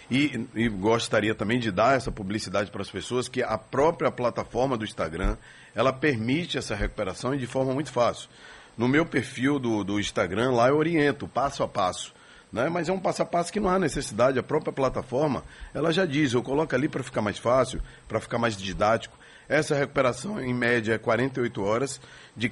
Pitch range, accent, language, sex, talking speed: 115-140 Hz, Brazilian, Portuguese, male, 195 wpm